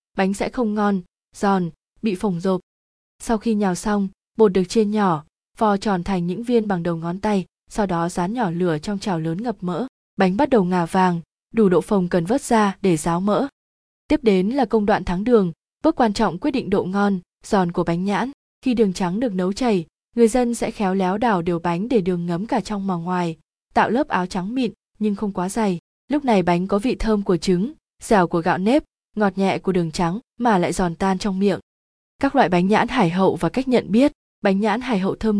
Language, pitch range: Vietnamese, 185-230 Hz